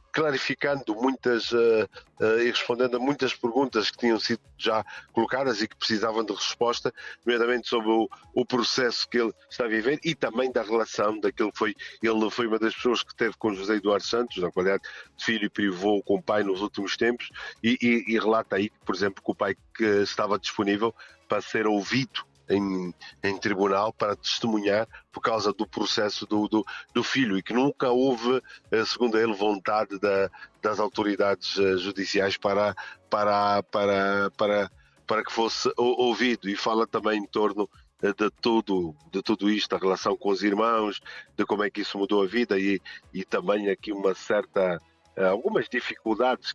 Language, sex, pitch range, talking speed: Portuguese, male, 100-115 Hz, 180 wpm